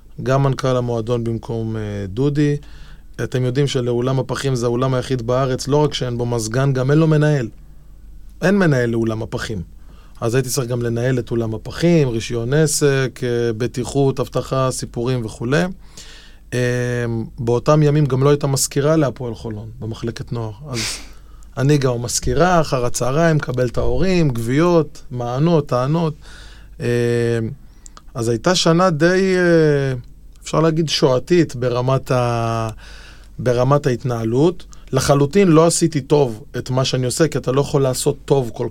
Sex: male